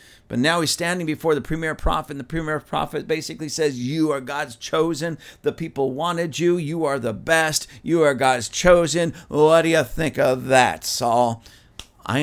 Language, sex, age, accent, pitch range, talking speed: English, male, 50-69, American, 130-200 Hz, 185 wpm